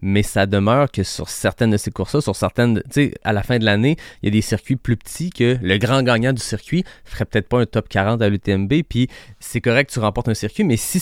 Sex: male